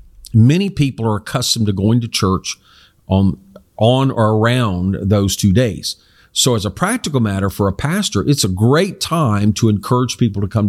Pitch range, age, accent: 100-140 Hz, 50-69, American